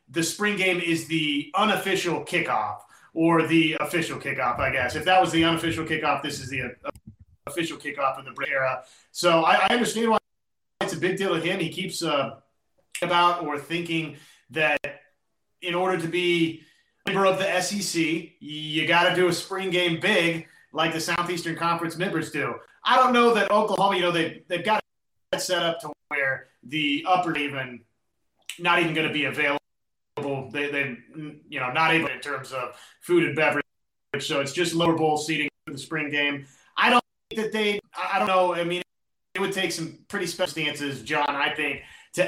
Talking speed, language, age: 195 wpm, English, 30-49